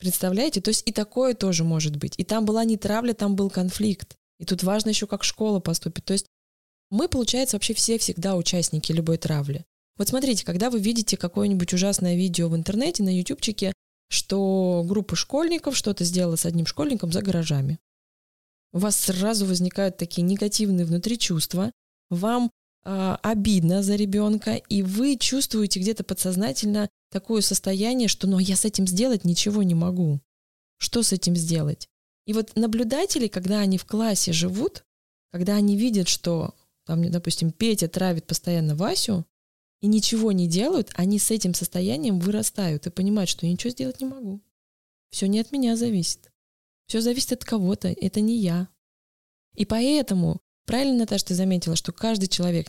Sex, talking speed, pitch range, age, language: female, 160 wpm, 175-215 Hz, 20-39, Russian